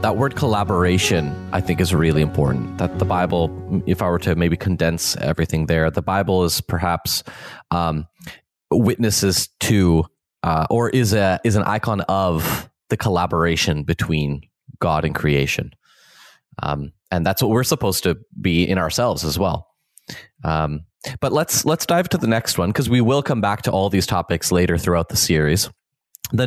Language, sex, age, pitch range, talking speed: English, male, 20-39, 90-125 Hz, 170 wpm